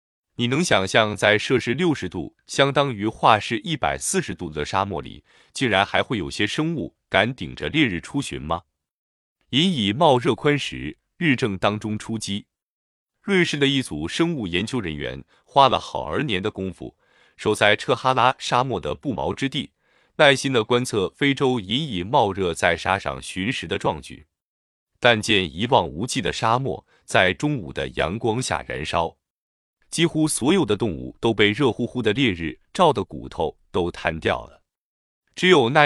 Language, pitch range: Chinese, 95-140 Hz